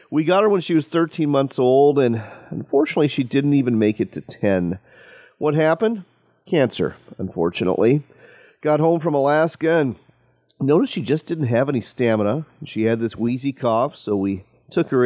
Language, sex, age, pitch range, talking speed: English, male, 40-59, 105-145 Hz, 170 wpm